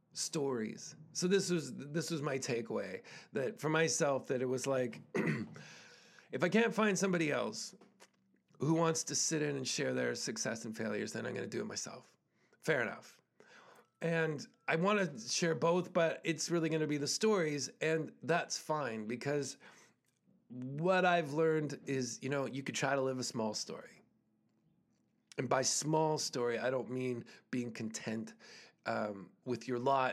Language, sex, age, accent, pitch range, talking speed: English, male, 40-59, American, 120-160 Hz, 185 wpm